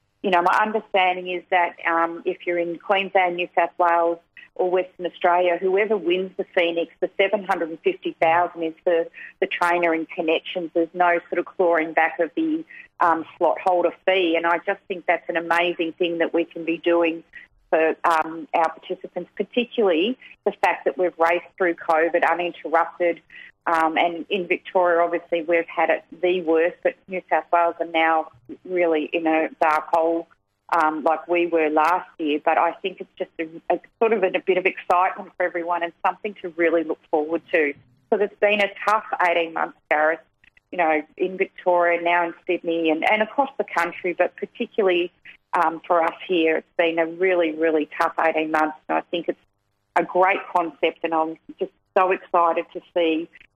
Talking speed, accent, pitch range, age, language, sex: 185 wpm, Australian, 165-185 Hz, 40-59, English, female